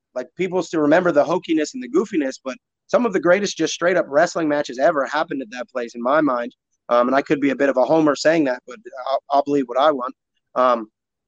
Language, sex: English, male